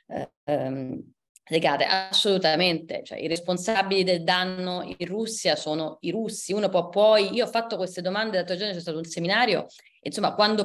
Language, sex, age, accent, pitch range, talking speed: Italian, female, 30-49, native, 175-200 Hz, 165 wpm